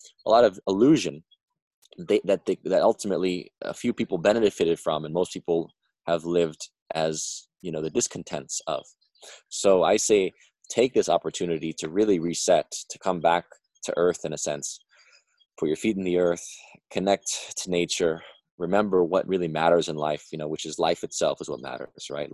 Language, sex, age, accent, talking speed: English, male, 20-39, American, 175 wpm